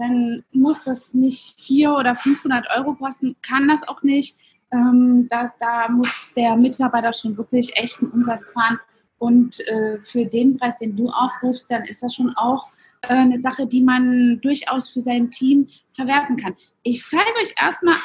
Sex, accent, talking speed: female, German, 175 wpm